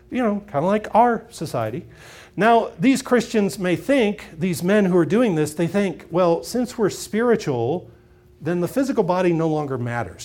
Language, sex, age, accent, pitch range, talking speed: English, male, 40-59, American, 150-220 Hz, 180 wpm